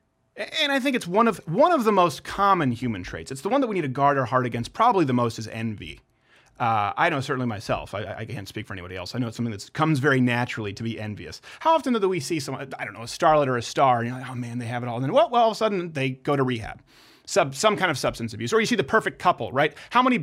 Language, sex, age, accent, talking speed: English, male, 30-49, American, 305 wpm